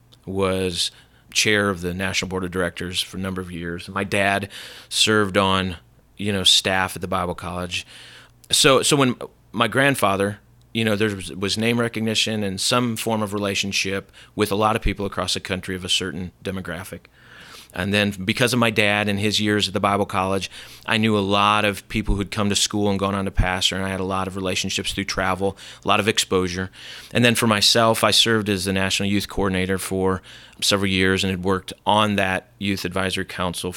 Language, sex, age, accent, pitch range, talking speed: English, male, 30-49, American, 95-110 Hz, 205 wpm